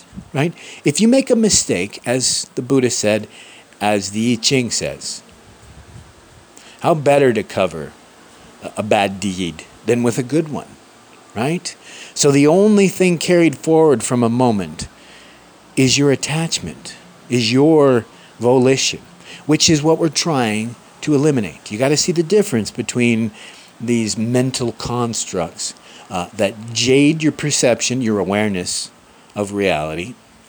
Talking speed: 135 wpm